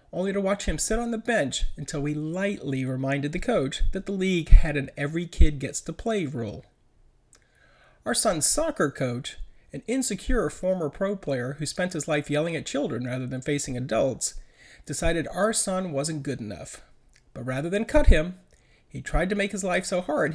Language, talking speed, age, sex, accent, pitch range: English, 175 wpm, 40-59, male, American, 130-200 Hz